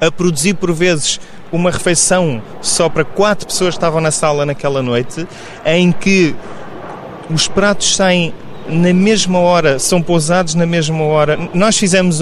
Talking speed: 150 wpm